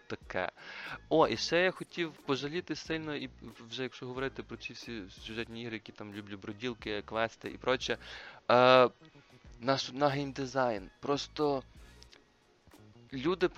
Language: Russian